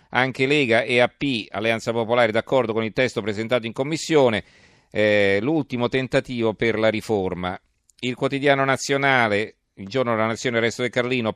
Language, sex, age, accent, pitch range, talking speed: Italian, male, 40-59, native, 110-130 Hz, 160 wpm